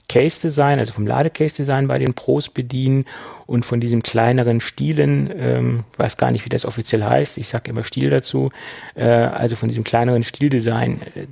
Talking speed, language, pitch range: 180 wpm, German, 115-145 Hz